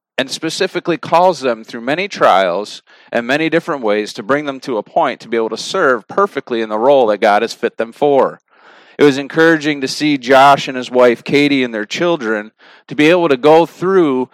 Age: 40-59